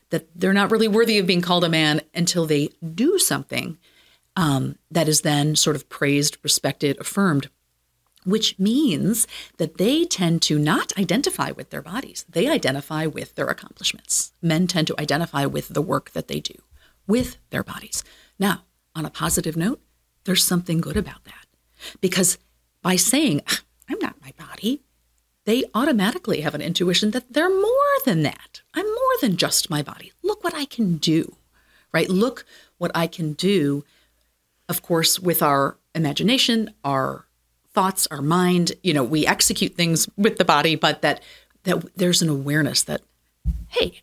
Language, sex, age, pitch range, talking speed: English, female, 40-59, 150-200 Hz, 165 wpm